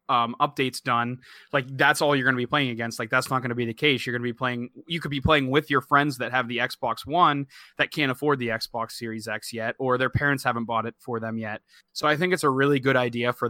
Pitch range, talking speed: 120-145 Hz, 280 wpm